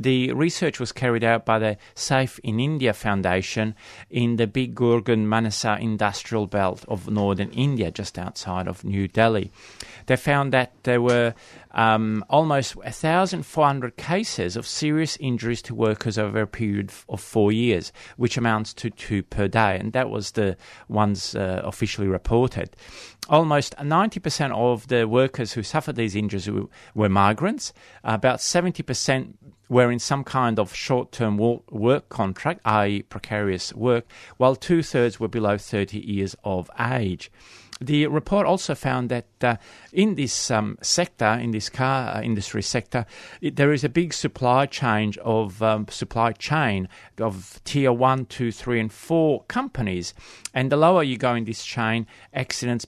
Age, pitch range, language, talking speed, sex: 30-49, 105-130 Hz, English, 155 wpm, male